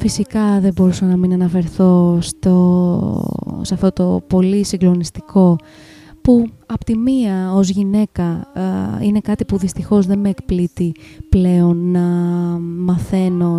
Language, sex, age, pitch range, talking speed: Greek, female, 20-39, 180-205 Hz, 135 wpm